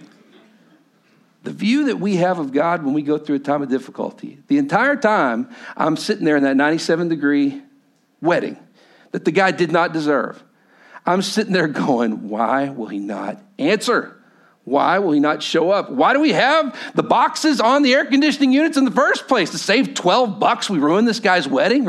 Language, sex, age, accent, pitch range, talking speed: English, male, 50-69, American, 200-270 Hz, 195 wpm